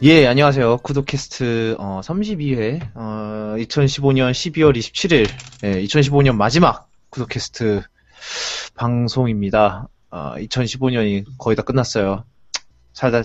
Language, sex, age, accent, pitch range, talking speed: English, male, 20-39, Korean, 105-140 Hz, 90 wpm